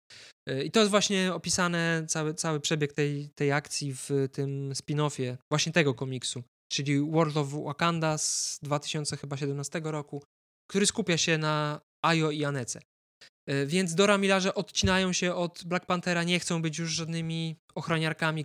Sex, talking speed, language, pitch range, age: male, 145 wpm, Polish, 140-170 Hz, 20-39